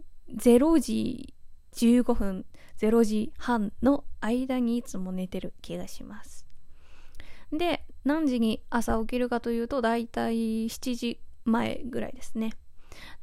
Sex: female